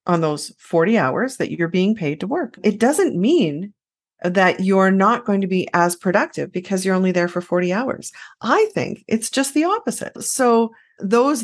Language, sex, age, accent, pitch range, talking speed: English, female, 30-49, American, 180-235 Hz, 190 wpm